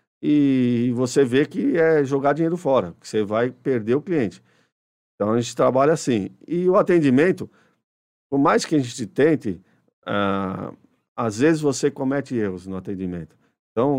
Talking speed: 160 wpm